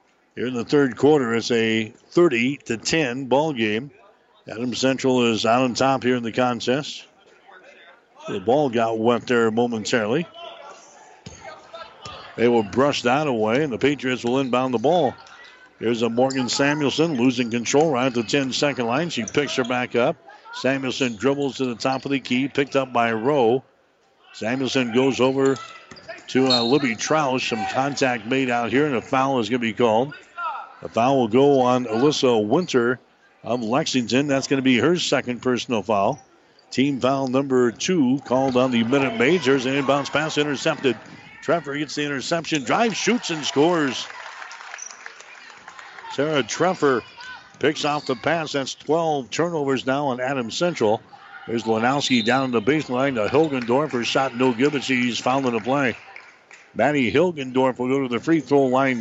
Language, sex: English, male